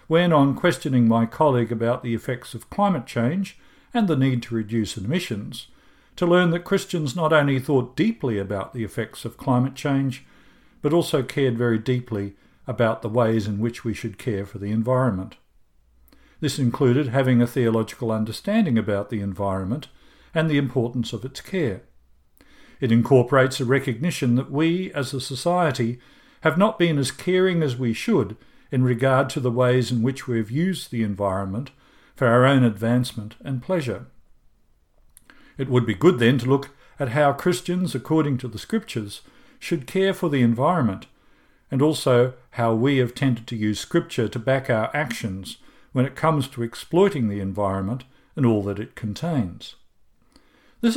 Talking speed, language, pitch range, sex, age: 165 wpm, English, 115-145 Hz, male, 60-79